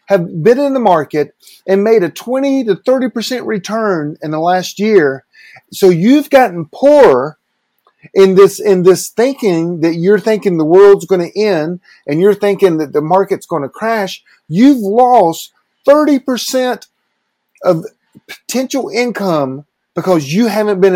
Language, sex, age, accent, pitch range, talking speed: English, male, 40-59, American, 170-225 Hz, 150 wpm